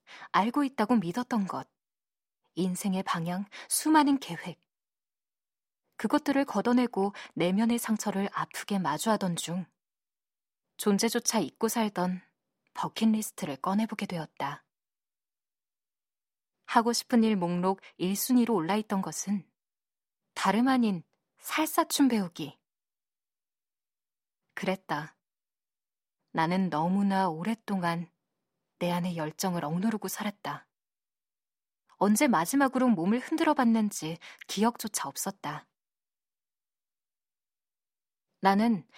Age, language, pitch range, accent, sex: 20-39, Korean, 180-240 Hz, native, female